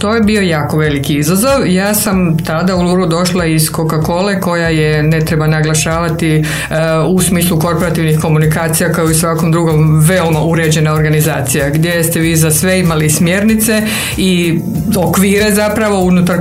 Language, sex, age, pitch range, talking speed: Croatian, female, 50-69, 160-190 Hz, 150 wpm